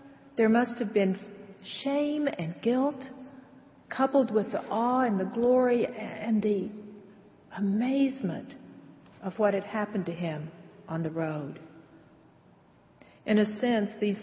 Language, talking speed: English, 125 wpm